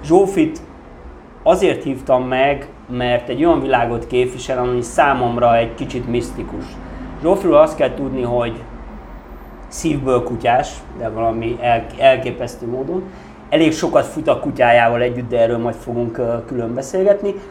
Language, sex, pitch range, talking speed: Hungarian, male, 115-140 Hz, 125 wpm